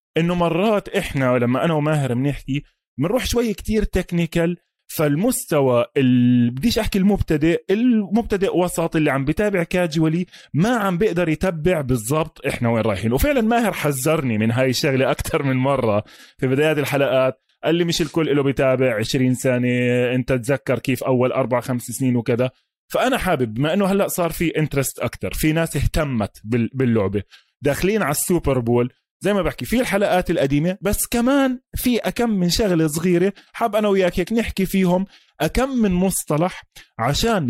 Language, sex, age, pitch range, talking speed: Arabic, male, 20-39, 130-190 Hz, 155 wpm